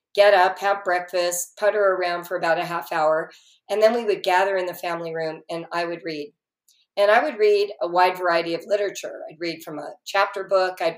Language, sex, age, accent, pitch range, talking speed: English, female, 50-69, American, 170-205 Hz, 220 wpm